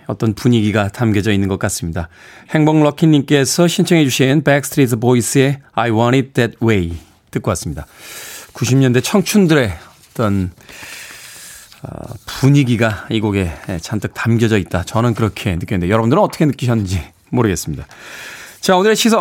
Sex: male